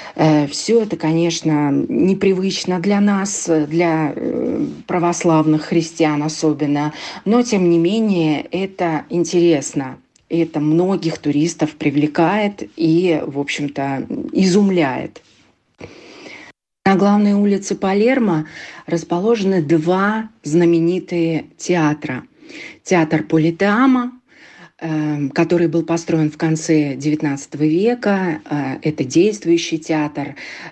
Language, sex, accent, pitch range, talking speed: Russian, female, native, 150-185 Hz, 85 wpm